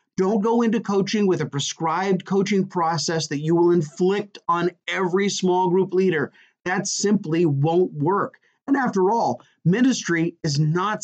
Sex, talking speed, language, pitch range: male, 150 wpm, English, 155-195 Hz